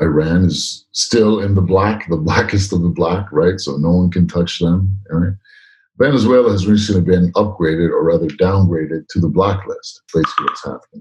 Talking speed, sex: 185 wpm, male